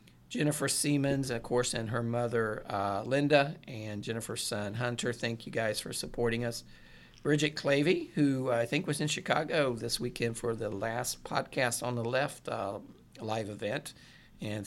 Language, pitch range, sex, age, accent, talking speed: English, 110-130 Hz, male, 50-69, American, 165 wpm